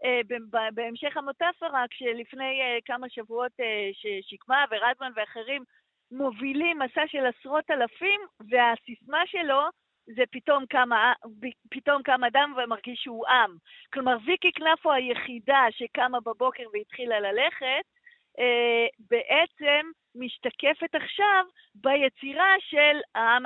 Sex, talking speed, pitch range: female, 105 wpm, 235-300 Hz